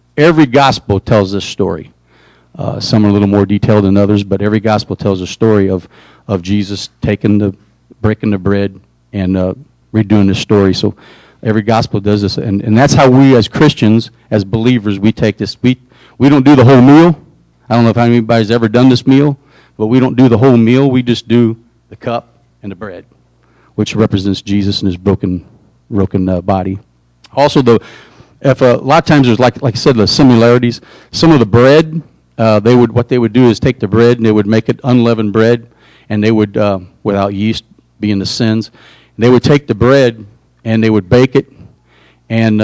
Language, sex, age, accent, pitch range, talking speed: English, male, 40-59, American, 100-125 Hz, 210 wpm